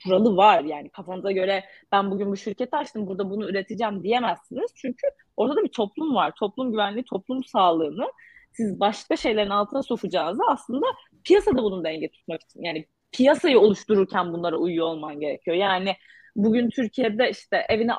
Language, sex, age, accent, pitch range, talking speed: Turkish, female, 30-49, native, 195-245 Hz, 155 wpm